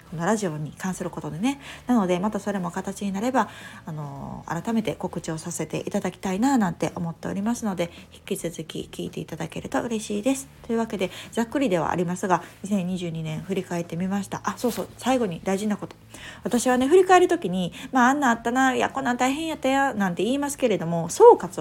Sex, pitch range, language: female, 175-240 Hz, Japanese